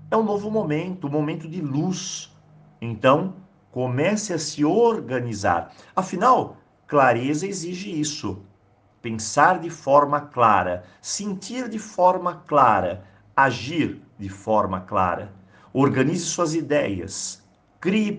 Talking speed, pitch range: 110 wpm, 105-165 Hz